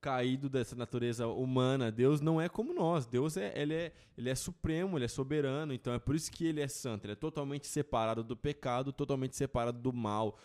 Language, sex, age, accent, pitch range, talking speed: Portuguese, male, 20-39, Brazilian, 120-150 Hz, 195 wpm